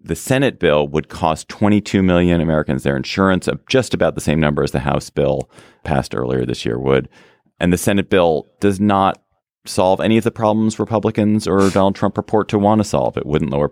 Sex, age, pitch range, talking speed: male, 30-49, 70-95 Hz, 210 wpm